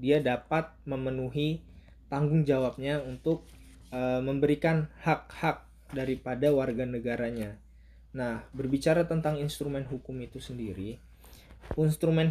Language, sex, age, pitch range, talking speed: Indonesian, male, 20-39, 120-150 Hz, 95 wpm